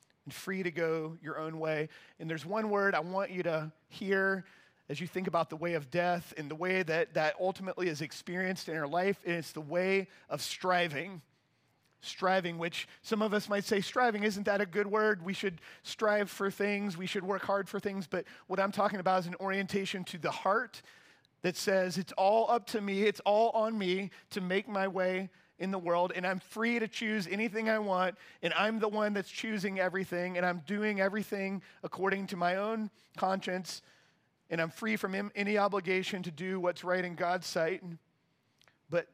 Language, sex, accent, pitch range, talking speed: English, male, American, 170-200 Hz, 200 wpm